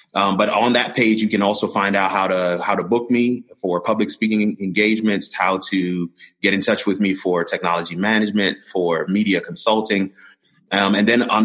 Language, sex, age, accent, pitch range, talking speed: English, male, 30-49, American, 90-105 Hz, 195 wpm